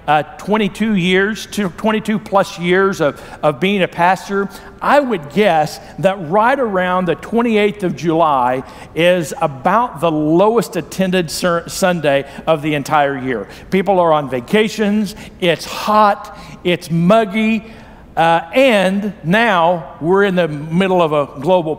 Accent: American